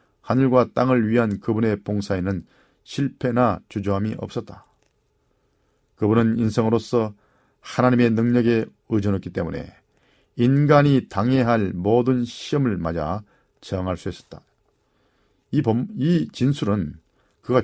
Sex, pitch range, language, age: male, 105-130 Hz, Korean, 40-59